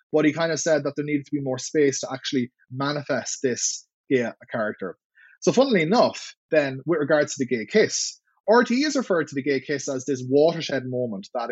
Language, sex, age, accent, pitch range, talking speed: English, male, 20-39, Irish, 130-175 Hz, 215 wpm